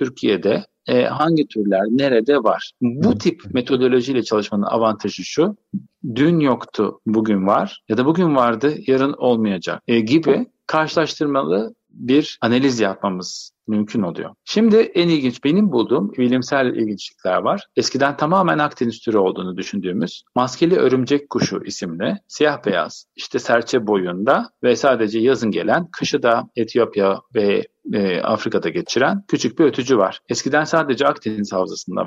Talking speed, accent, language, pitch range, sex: 135 wpm, native, Turkish, 110-155 Hz, male